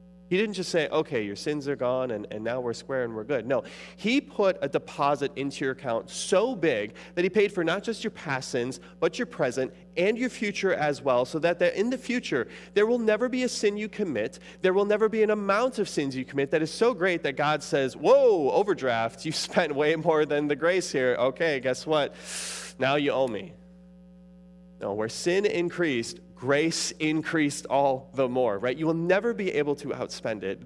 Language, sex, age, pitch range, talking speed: English, male, 30-49, 135-180 Hz, 215 wpm